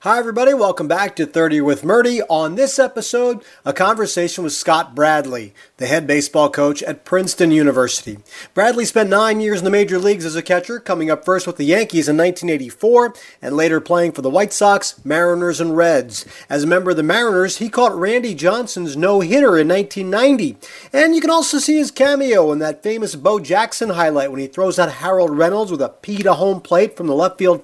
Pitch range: 155-215 Hz